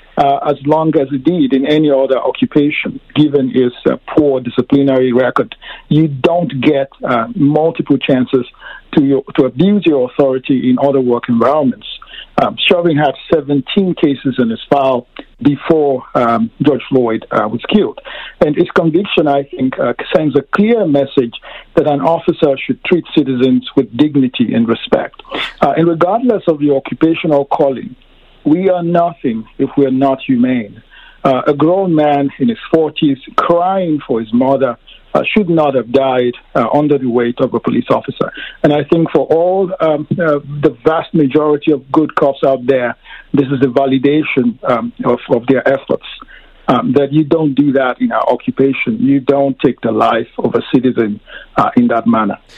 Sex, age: male, 50-69